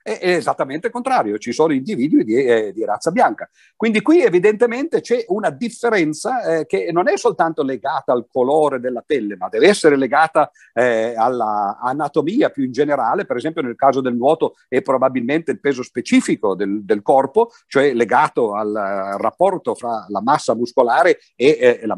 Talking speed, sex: 165 wpm, male